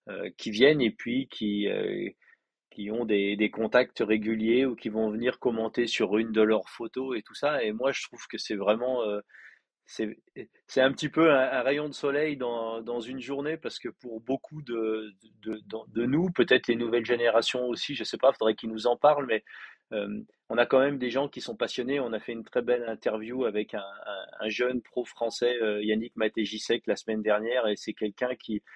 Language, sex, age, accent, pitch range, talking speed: French, male, 30-49, French, 110-135 Hz, 225 wpm